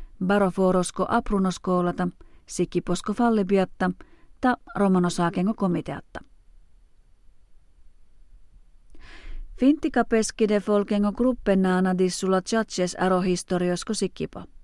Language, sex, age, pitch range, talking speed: Finnish, female, 40-59, 180-205 Hz, 55 wpm